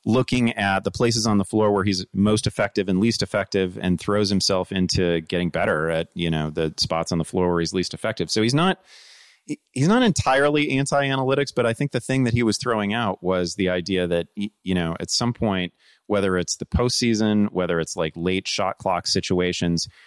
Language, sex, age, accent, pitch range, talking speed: English, male, 30-49, American, 85-115 Hz, 210 wpm